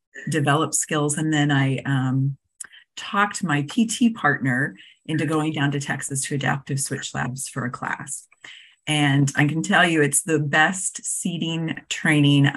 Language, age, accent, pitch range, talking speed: English, 30-49, American, 140-175 Hz, 155 wpm